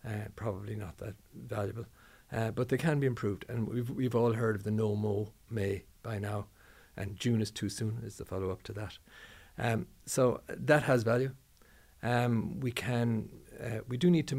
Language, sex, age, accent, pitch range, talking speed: English, male, 50-69, Irish, 105-120 Hz, 200 wpm